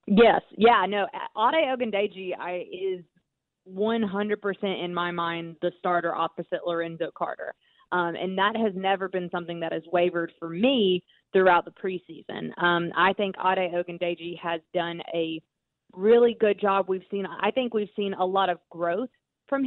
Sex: female